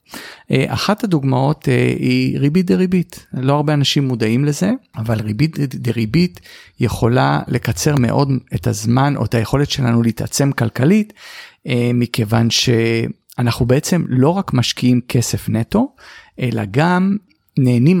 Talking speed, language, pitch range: 115 wpm, Hebrew, 125-195 Hz